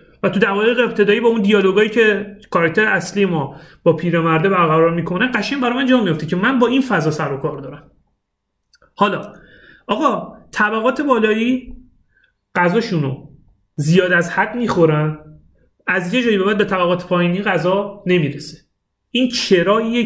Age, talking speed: 30-49, 145 wpm